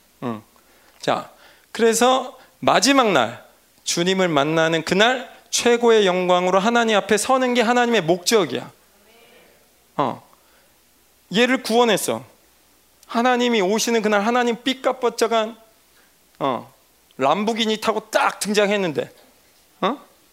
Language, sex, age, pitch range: Korean, male, 40-59, 180-240 Hz